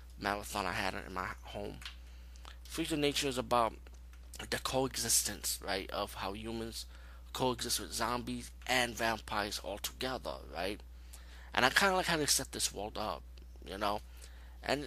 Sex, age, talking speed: male, 20-39, 155 wpm